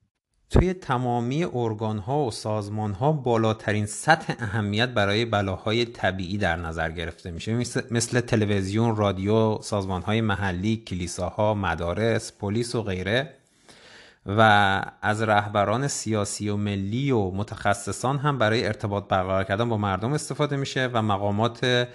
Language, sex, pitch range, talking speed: Persian, male, 105-125 Hz, 125 wpm